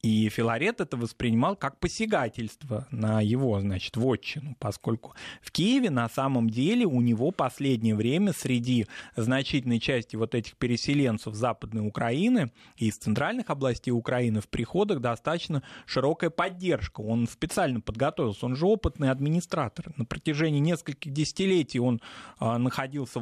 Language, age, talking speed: Russian, 20-39, 130 wpm